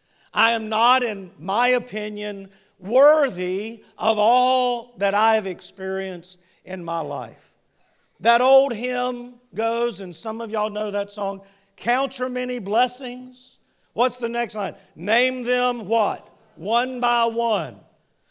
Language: English